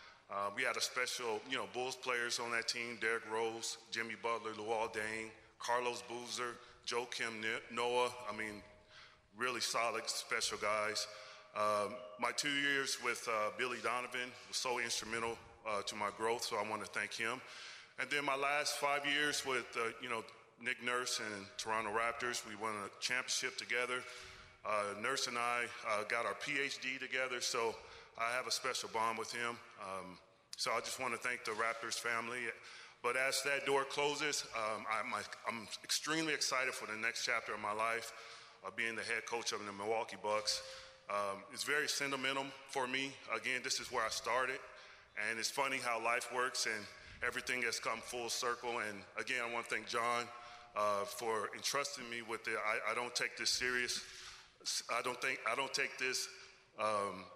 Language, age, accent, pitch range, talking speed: English, 30-49, American, 110-125 Hz, 185 wpm